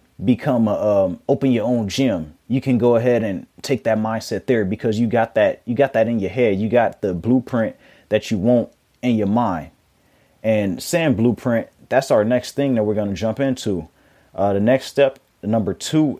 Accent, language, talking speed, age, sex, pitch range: American, English, 205 wpm, 30-49, male, 110-135 Hz